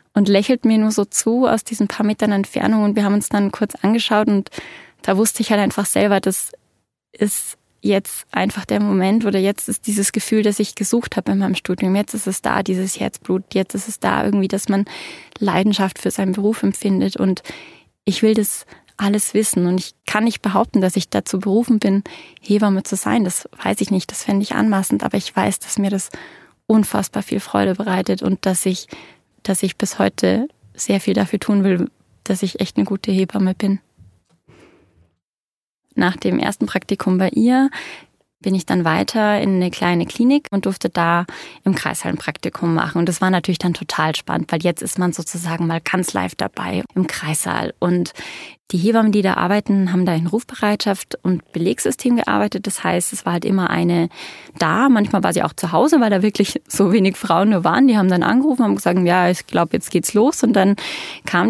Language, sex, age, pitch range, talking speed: German, female, 10-29, 185-220 Hz, 200 wpm